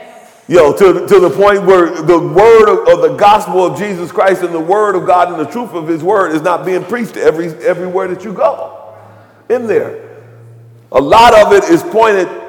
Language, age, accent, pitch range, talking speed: English, 40-59, American, 140-205 Hz, 210 wpm